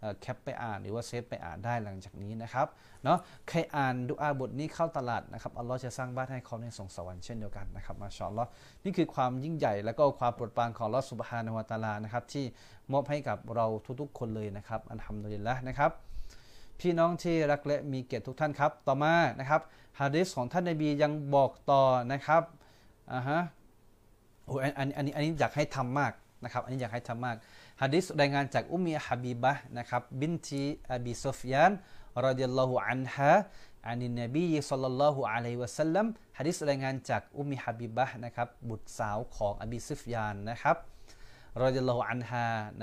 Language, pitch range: Thai, 115-145 Hz